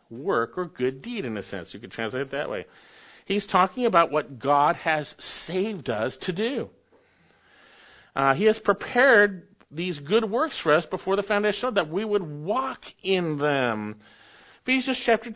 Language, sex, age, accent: English, male, 50-69, American